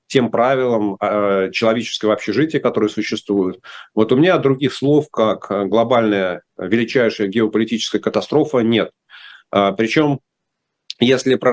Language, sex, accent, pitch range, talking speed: Russian, male, native, 105-130 Hz, 105 wpm